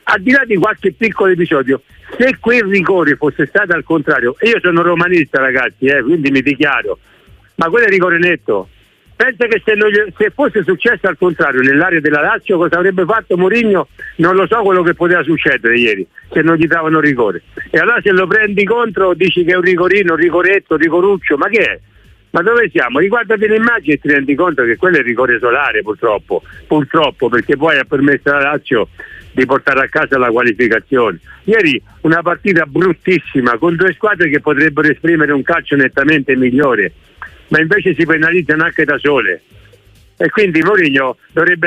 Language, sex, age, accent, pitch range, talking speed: Italian, male, 50-69, native, 145-195 Hz, 185 wpm